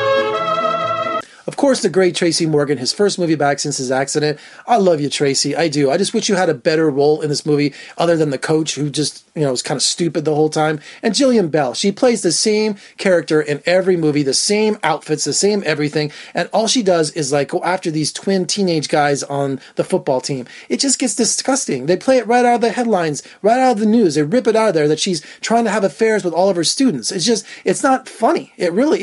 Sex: male